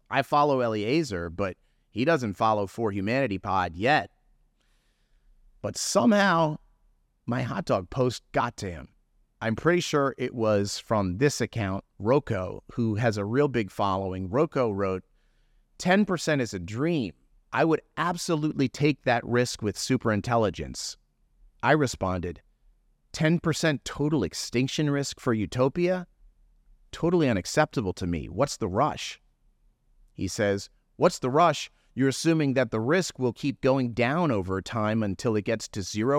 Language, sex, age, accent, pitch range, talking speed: English, male, 30-49, American, 105-145 Hz, 140 wpm